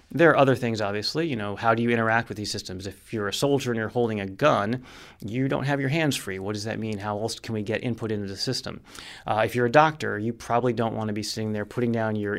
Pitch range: 100-115 Hz